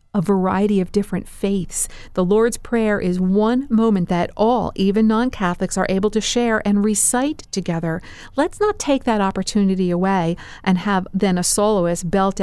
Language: English